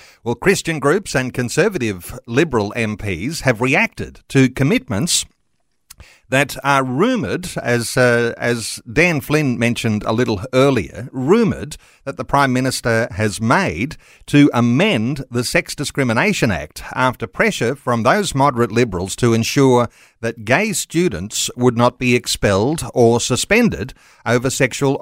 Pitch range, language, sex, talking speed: 120-150 Hz, English, male, 130 wpm